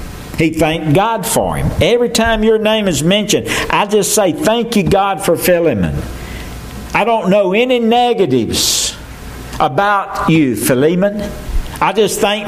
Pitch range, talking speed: 155-195 Hz, 145 wpm